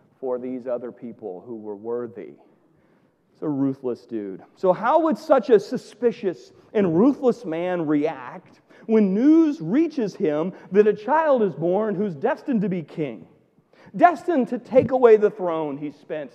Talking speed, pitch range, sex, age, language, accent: 160 wpm, 160-250 Hz, male, 40-59, English, American